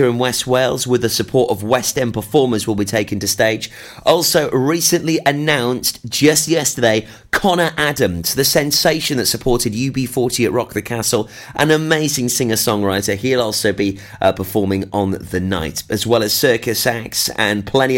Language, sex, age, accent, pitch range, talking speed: English, male, 30-49, British, 100-135 Hz, 165 wpm